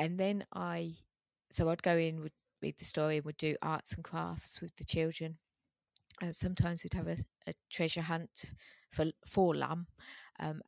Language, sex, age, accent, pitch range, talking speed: English, female, 30-49, British, 150-170 Hz, 180 wpm